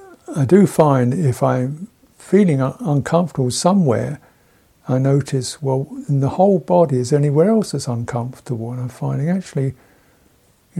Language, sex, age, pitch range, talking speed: English, male, 60-79, 125-165 Hz, 140 wpm